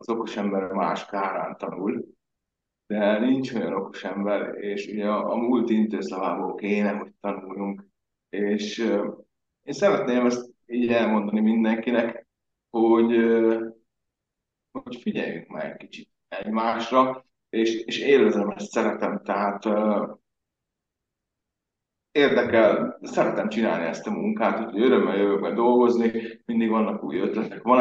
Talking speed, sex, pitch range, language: 125 wpm, male, 100-115 Hz, Hungarian